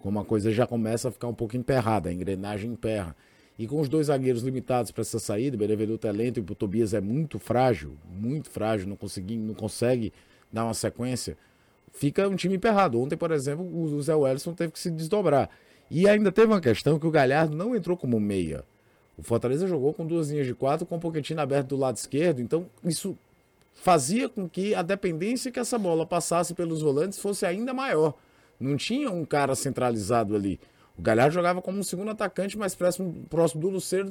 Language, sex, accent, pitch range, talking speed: Portuguese, male, Brazilian, 125-190 Hz, 200 wpm